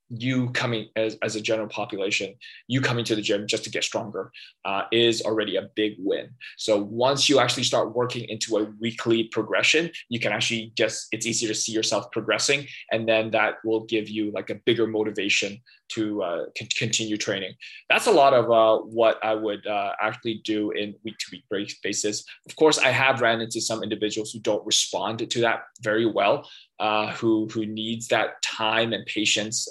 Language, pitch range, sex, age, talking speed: English, 105-120 Hz, male, 20-39, 190 wpm